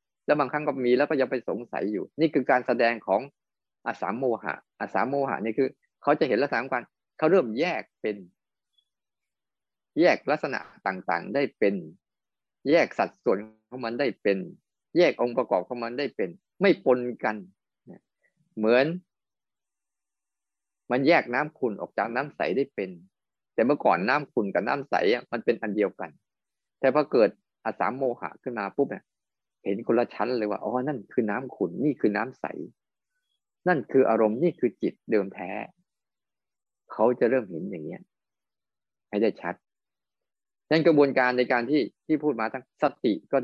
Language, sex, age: Thai, male, 20-39